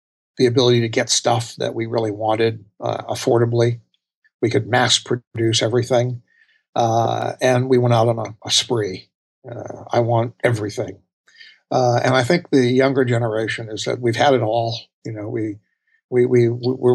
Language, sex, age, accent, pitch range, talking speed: English, male, 60-79, American, 115-125 Hz, 170 wpm